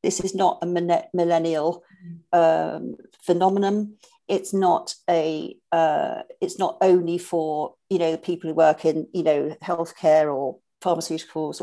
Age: 50-69